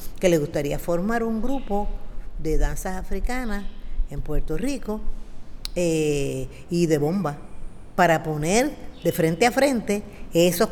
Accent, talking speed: American, 130 wpm